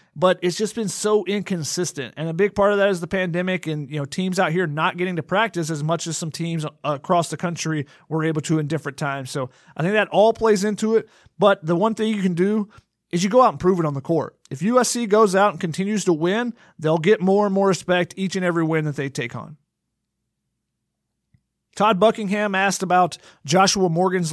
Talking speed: 225 wpm